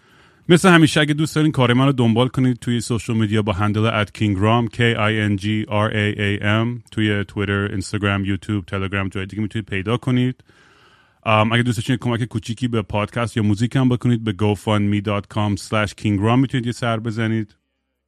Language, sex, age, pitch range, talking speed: Persian, male, 30-49, 105-130 Hz, 155 wpm